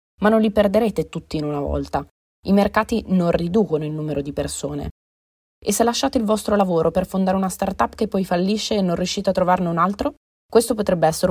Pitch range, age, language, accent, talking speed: 155-190 Hz, 20-39, Italian, native, 205 wpm